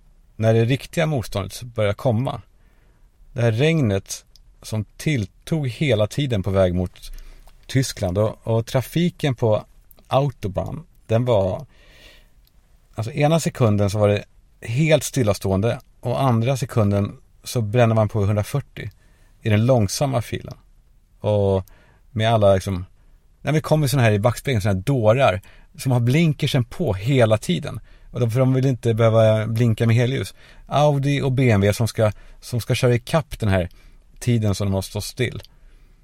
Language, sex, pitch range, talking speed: Swedish, male, 105-135 Hz, 150 wpm